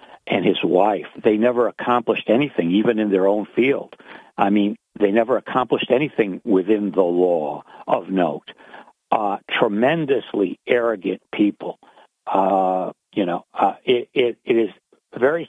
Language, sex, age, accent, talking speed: English, male, 60-79, American, 135 wpm